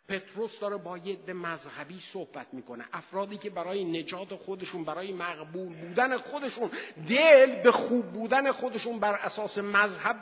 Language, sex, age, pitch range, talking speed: Persian, male, 50-69, 155-230 Hz, 135 wpm